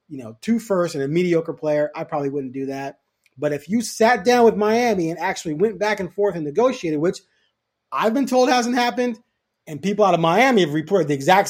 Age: 30-49